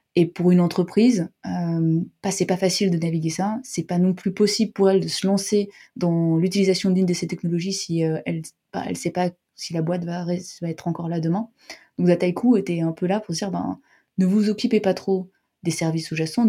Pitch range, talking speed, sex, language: 170-195 Hz, 225 wpm, female, French